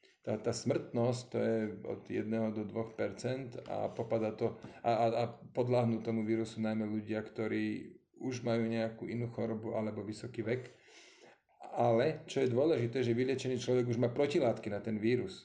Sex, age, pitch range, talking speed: male, 40-59, 110-125 Hz, 155 wpm